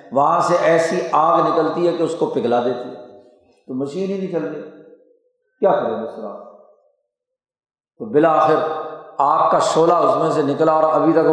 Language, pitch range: Urdu, 155-190 Hz